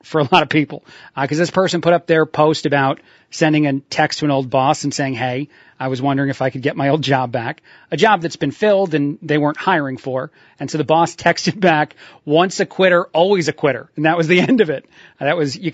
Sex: male